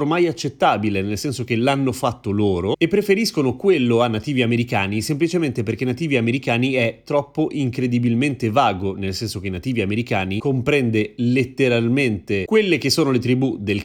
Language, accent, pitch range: Italian, native, 105-130 Hz